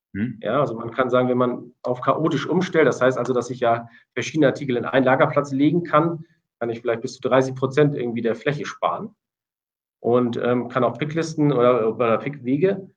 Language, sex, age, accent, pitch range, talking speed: German, male, 40-59, German, 120-140 Hz, 195 wpm